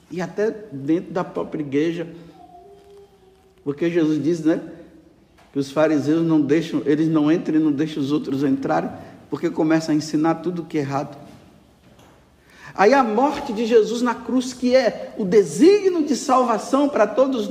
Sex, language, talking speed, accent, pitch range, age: male, Portuguese, 160 wpm, Brazilian, 155-245 Hz, 60-79